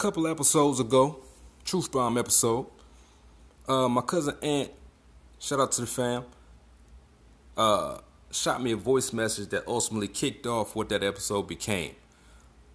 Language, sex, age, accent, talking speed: English, male, 30-49, American, 140 wpm